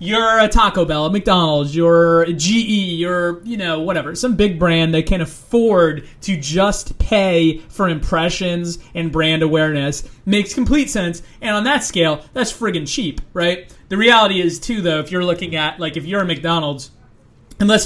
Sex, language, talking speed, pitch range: male, English, 180 wpm, 165-210 Hz